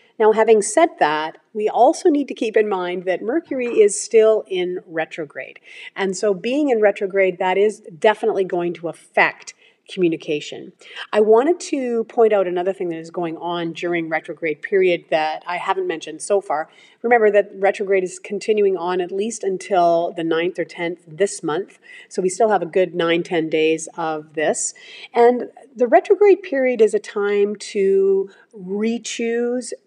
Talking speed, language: 170 wpm, English